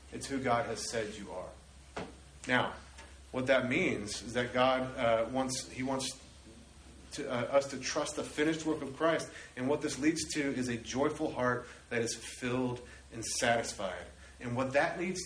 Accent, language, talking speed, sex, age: American, English, 180 wpm, male, 30-49